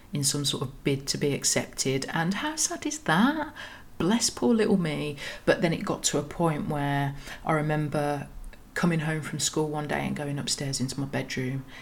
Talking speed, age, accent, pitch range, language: 200 wpm, 30-49, British, 135-150 Hz, English